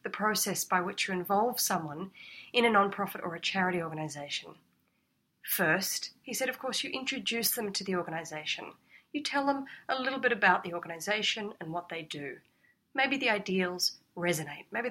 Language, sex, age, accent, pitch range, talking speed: English, female, 30-49, Australian, 180-250 Hz, 175 wpm